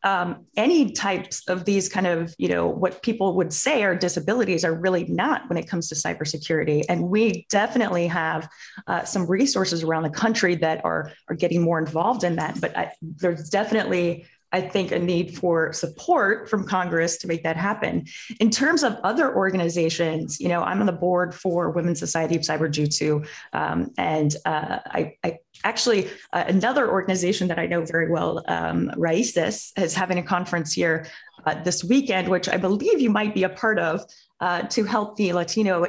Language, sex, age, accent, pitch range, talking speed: English, female, 20-39, American, 165-200 Hz, 185 wpm